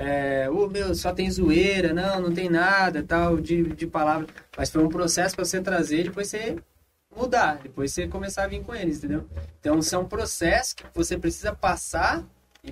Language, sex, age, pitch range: Portuguese, male, 20-39, 150-195 Hz